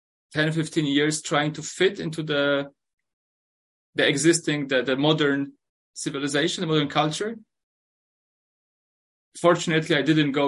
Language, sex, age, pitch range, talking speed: English, male, 20-39, 120-160 Hz, 125 wpm